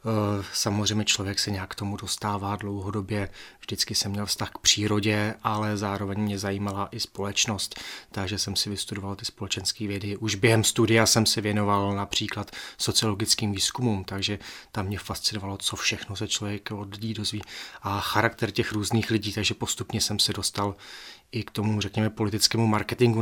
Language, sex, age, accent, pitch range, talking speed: Czech, male, 30-49, native, 100-110 Hz, 160 wpm